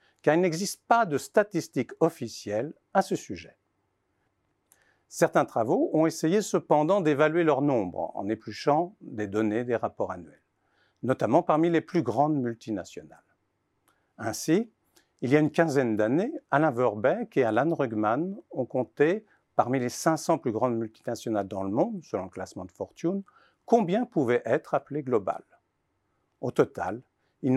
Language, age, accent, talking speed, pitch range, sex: French, 50-69, French, 145 wpm, 110-160 Hz, male